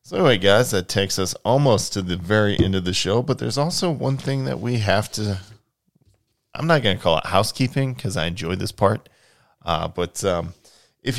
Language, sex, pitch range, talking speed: English, male, 85-110 Hz, 215 wpm